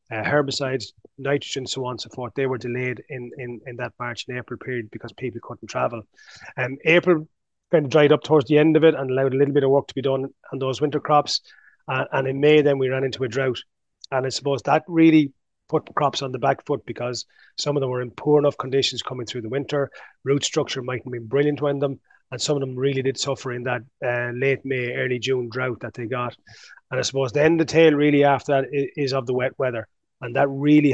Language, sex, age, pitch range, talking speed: English, male, 30-49, 120-140 Hz, 250 wpm